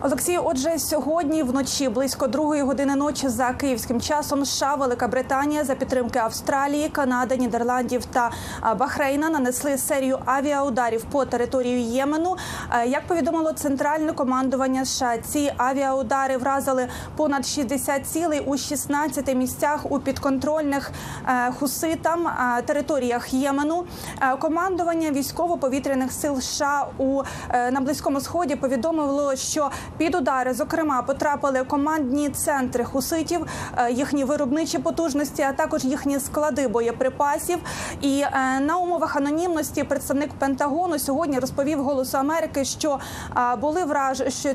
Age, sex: 30-49, female